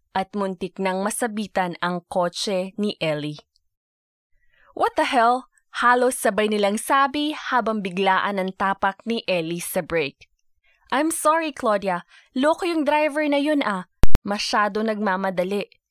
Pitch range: 185-240 Hz